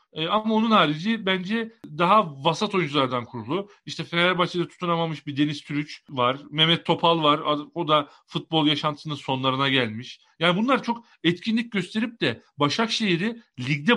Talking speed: 135 wpm